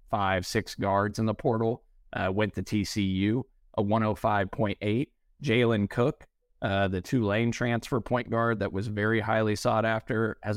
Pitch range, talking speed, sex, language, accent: 95-110 Hz, 160 wpm, male, English, American